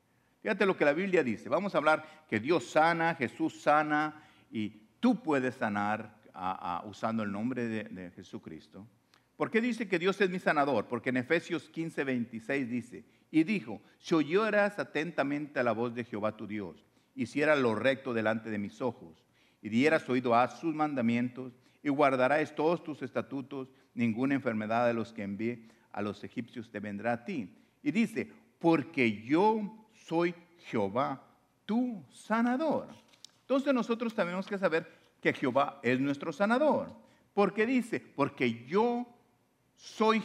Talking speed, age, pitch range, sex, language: 160 wpm, 50-69, 120-200 Hz, male, English